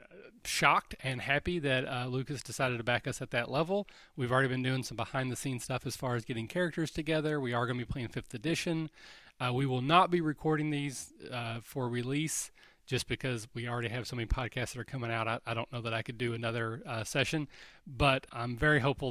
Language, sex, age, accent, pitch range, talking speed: English, male, 30-49, American, 115-150 Hz, 225 wpm